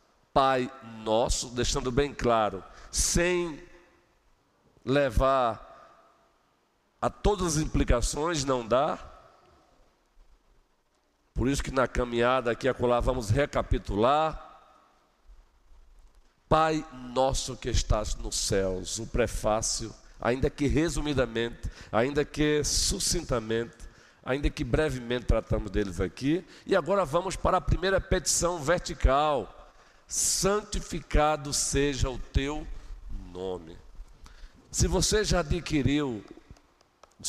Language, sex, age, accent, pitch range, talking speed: Portuguese, male, 50-69, Brazilian, 110-150 Hz, 100 wpm